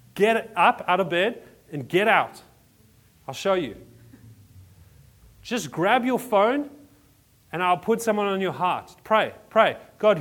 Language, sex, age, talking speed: English, male, 30-49, 145 wpm